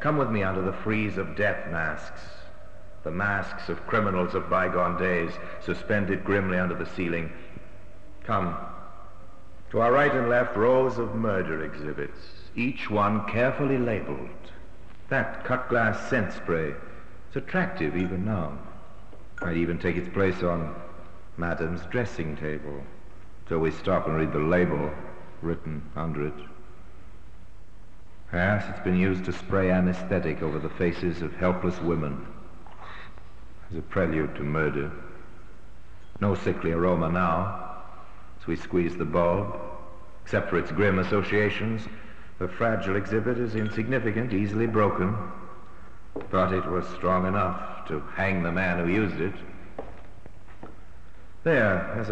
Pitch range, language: 85-100 Hz, English